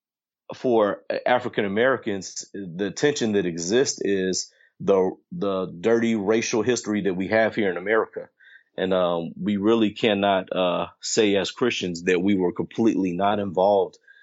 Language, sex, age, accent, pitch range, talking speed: English, male, 30-49, American, 95-110 Hz, 145 wpm